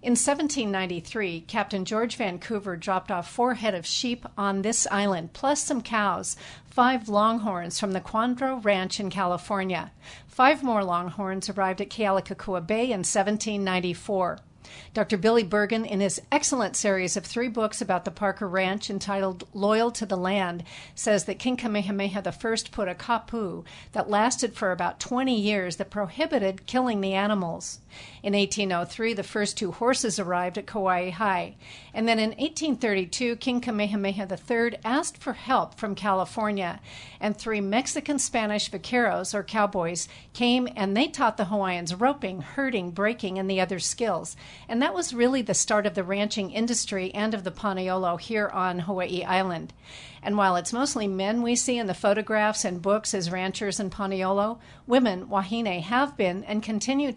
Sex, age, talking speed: female, 50-69, 160 wpm